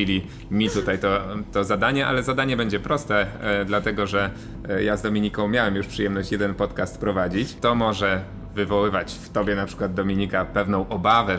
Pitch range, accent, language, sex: 95-115 Hz, native, Polish, male